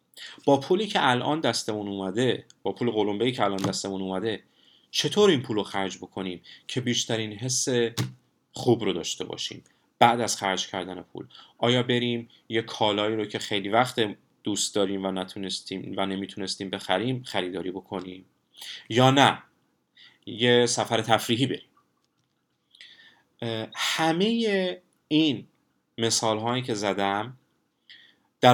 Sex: male